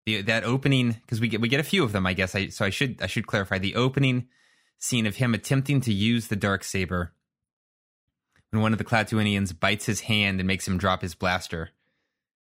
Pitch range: 95-120 Hz